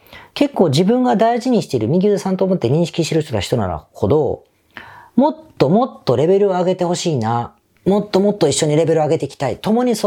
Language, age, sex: Japanese, 40-59, female